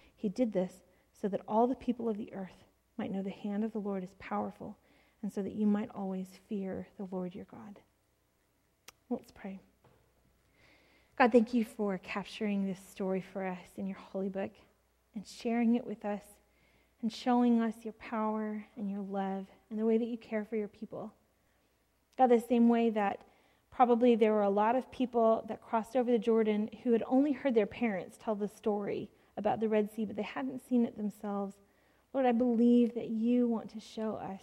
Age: 30-49